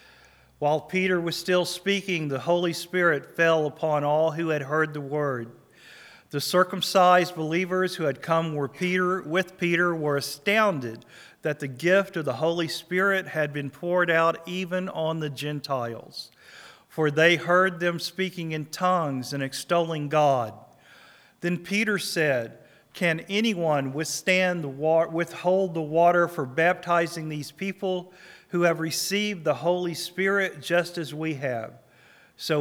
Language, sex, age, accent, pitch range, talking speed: English, male, 40-59, American, 145-180 Hz, 145 wpm